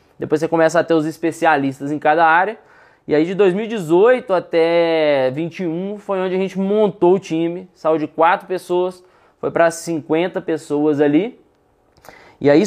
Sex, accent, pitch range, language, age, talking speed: male, Brazilian, 155-195 Hz, Portuguese, 20-39, 160 wpm